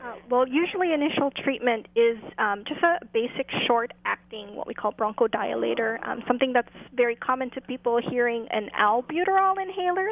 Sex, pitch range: female, 220-270 Hz